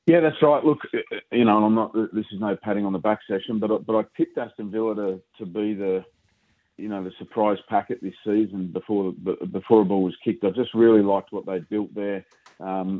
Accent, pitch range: Australian, 95-110 Hz